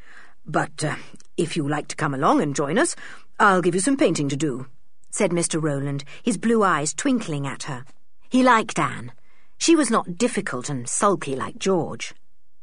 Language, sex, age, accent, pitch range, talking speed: English, female, 50-69, British, 150-250 Hz, 180 wpm